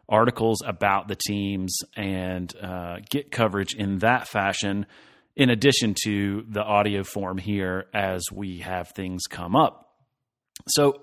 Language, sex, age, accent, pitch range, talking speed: English, male, 30-49, American, 105-140 Hz, 135 wpm